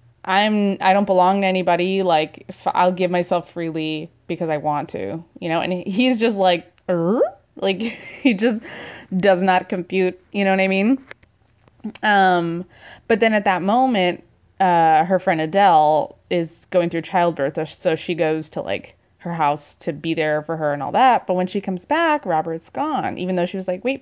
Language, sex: English, female